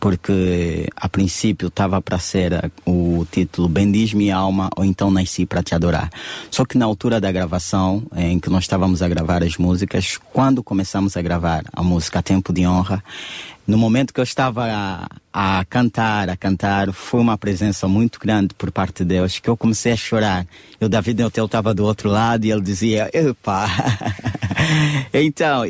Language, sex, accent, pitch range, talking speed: Portuguese, male, Brazilian, 90-115 Hz, 175 wpm